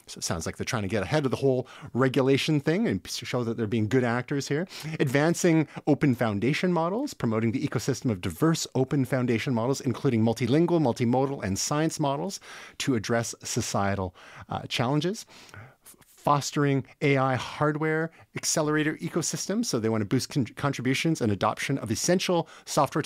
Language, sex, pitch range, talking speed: English, male, 115-155 Hz, 155 wpm